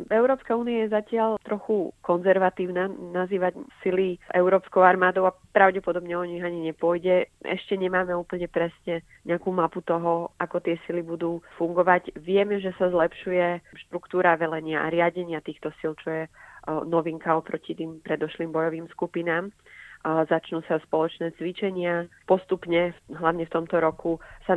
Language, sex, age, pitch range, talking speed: Slovak, female, 30-49, 160-180 Hz, 135 wpm